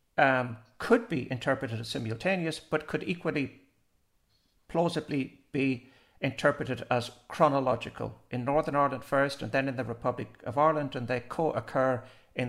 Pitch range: 115-155 Hz